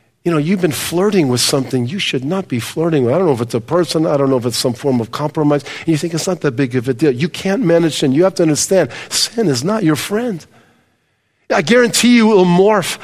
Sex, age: male, 50-69